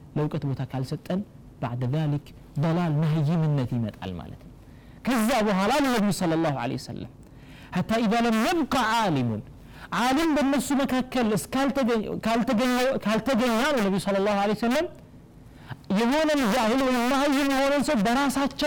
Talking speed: 130 wpm